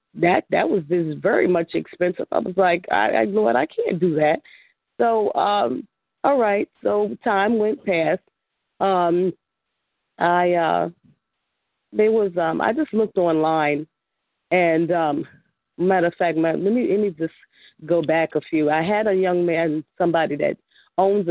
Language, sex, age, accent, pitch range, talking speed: English, female, 40-59, American, 160-190 Hz, 165 wpm